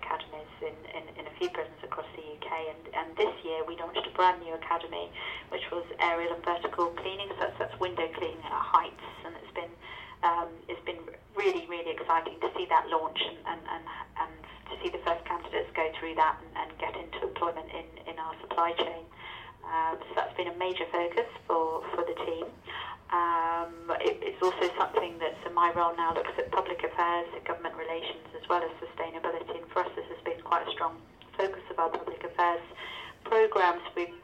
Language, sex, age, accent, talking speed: English, female, 30-49, British, 205 wpm